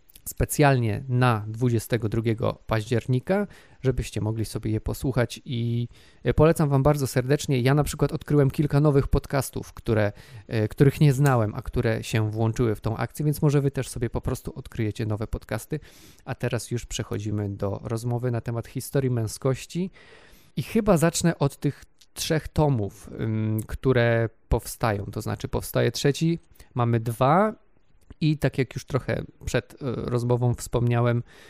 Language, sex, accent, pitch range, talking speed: Polish, male, native, 115-140 Hz, 140 wpm